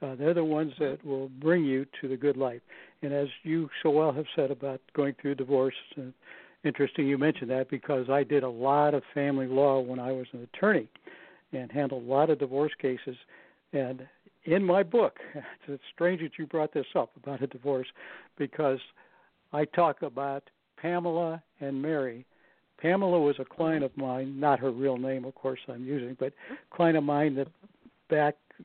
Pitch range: 135-165 Hz